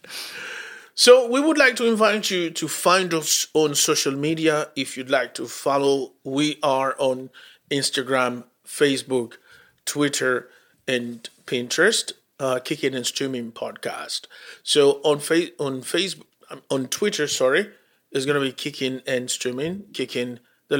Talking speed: 140 wpm